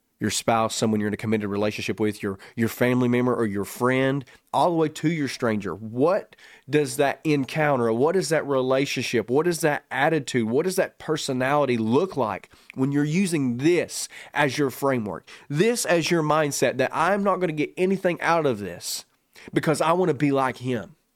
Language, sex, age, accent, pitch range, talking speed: English, male, 30-49, American, 125-165 Hz, 195 wpm